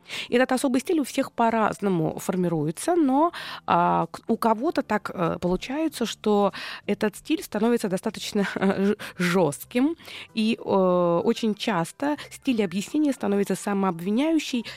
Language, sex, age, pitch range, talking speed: Russian, female, 20-39, 190-255 Hz, 120 wpm